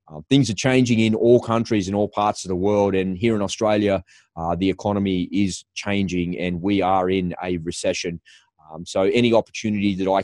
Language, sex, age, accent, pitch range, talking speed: English, male, 20-39, Australian, 90-120 Hz, 200 wpm